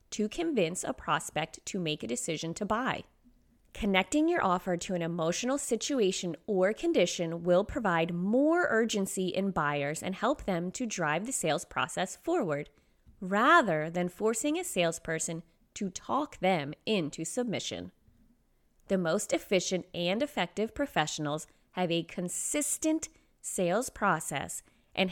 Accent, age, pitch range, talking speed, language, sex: American, 30-49, 165-225 Hz, 135 wpm, English, female